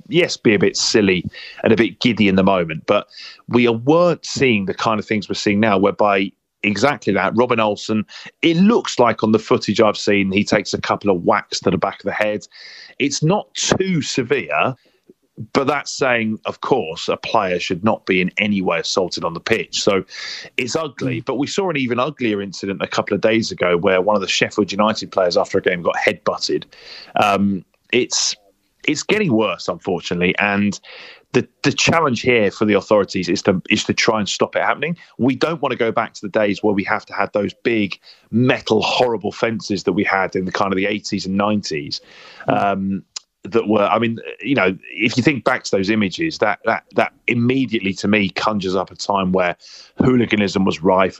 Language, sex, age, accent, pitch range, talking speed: English, male, 30-49, British, 100-115 Hz, 205 wpm